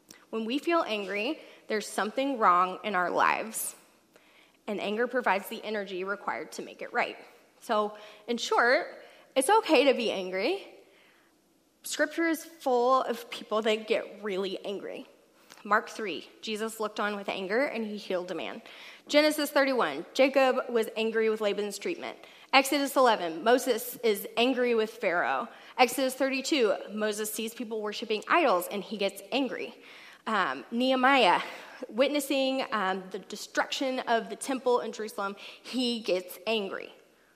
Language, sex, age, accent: English, female, 20-39, American